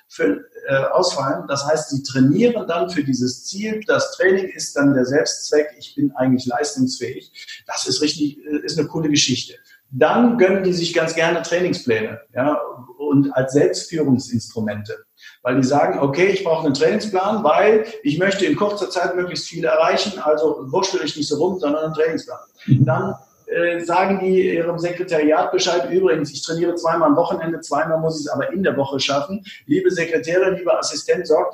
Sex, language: male, German